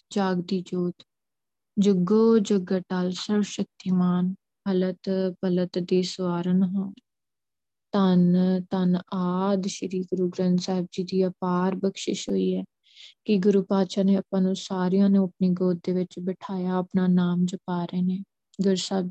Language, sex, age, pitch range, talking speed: Punjabi, female, 20-39, 185-210 Hz, 140 wpm